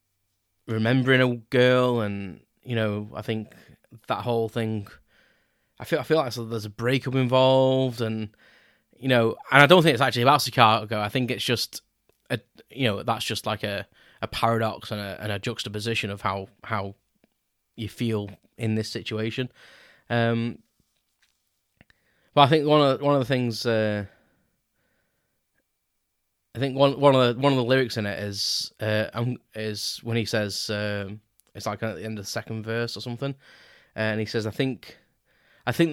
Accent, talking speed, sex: British, 175 wpm, male